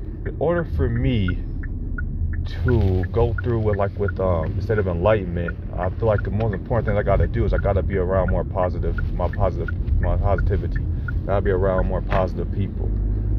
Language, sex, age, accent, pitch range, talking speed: English, male, 30-49, American, 85-100 Hz, 200 wpm